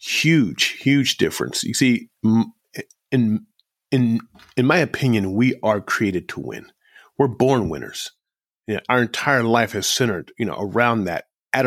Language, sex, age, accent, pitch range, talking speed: English, male, 40-59, American, 110-130 Hz, 155 wpm